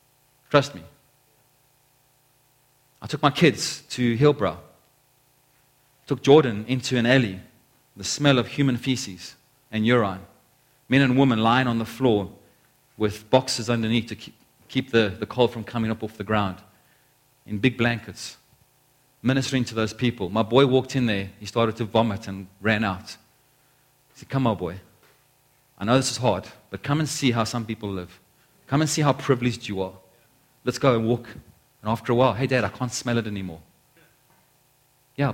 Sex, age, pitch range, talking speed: male, 30-49, 85-130 Hz, 170 wpm